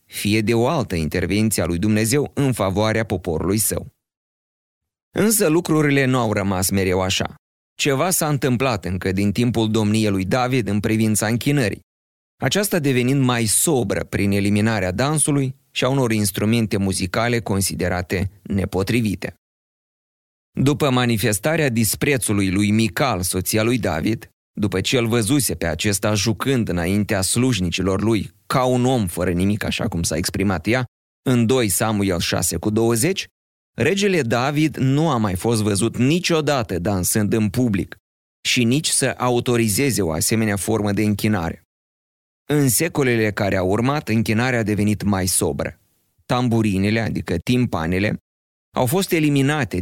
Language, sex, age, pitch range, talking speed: Romanian, male, 30-49, 95-130 Hz, 135 wpm